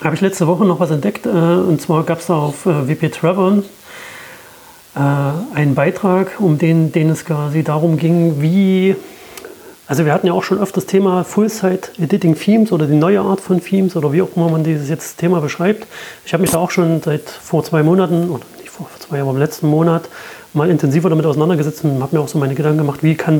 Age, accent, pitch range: 30-49, German, 155-185 Hz